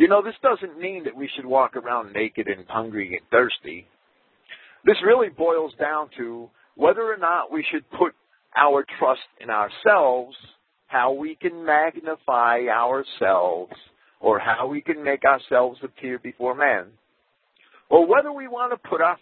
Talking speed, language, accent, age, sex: 160 wpm, English, American, 50-69, male